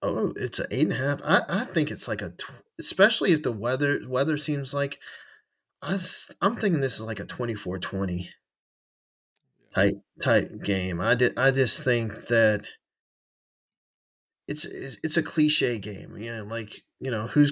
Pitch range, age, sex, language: 115-145 Hz, 30-49, male, English